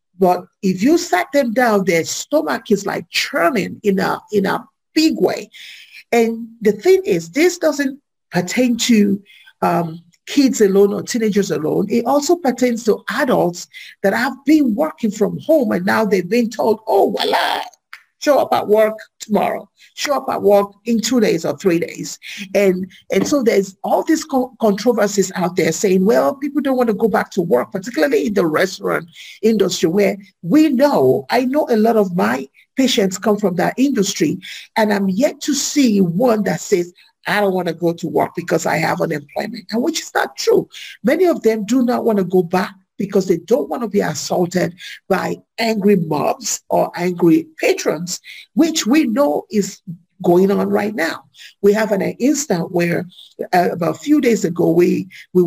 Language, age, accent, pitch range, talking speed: English, 50-69, Nigerian, 185-255 Hz, 185 wpm